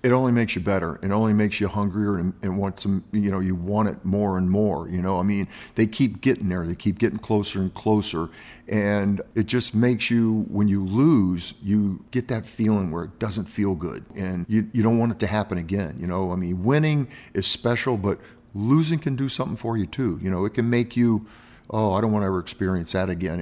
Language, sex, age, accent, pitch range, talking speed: English, male, 50-69, American, 95-115 Hz, 235 wpm